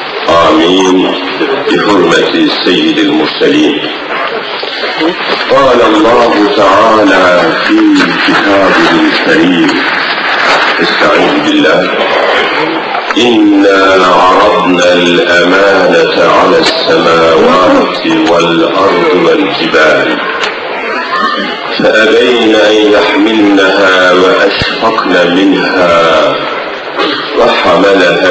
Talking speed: 50 wpm